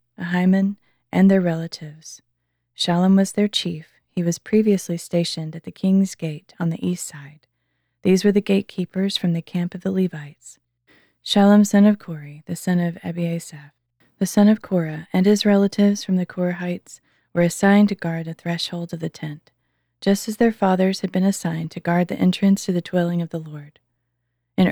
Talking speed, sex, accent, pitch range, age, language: 180 wpm, female, American, 160-190 Hz, 30-49, English